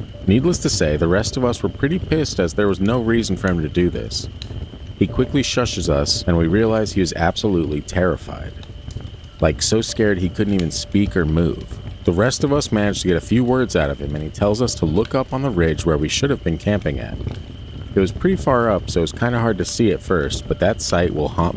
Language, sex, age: English, male, 40-59